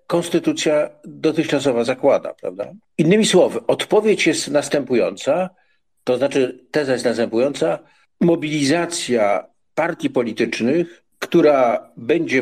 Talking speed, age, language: 90 wpm, 50-69, Polish